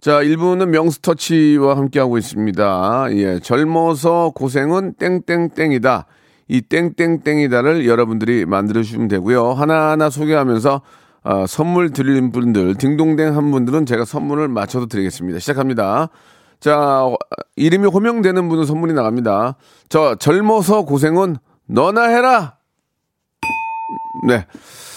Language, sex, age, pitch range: Korean, male, 40-59, 120-170 Hz